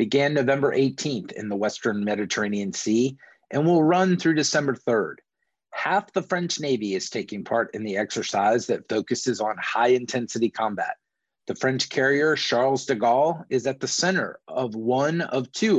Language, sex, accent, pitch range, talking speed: English, male, American, 120-155 Hz, 165 wpm